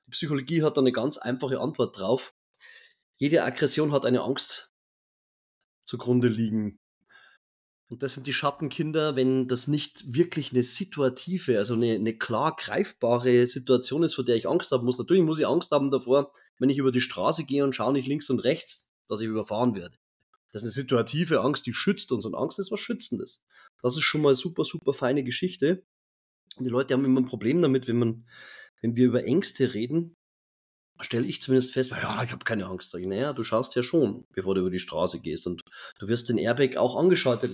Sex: male